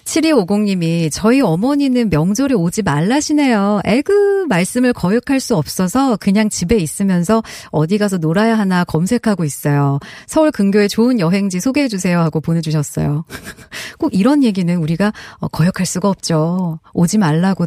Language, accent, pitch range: Korean, native, 165-230 Hz